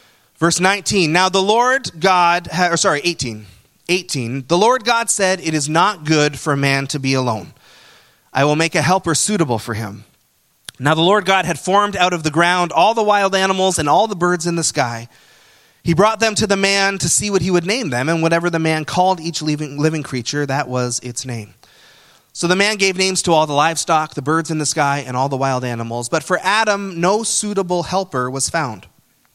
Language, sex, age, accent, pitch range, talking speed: English, male, 30-49, American, 130-180 Hz, 215 wpm